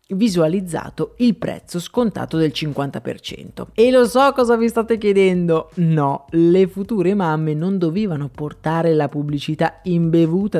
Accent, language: native, Italian